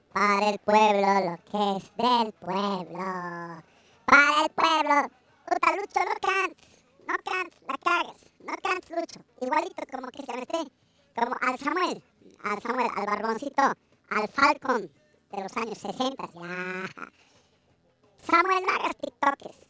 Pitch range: 215-315 Hz